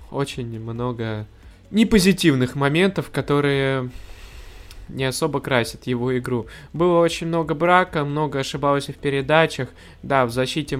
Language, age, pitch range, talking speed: Russian, 20-39, 120-145 Hz, 115 wpm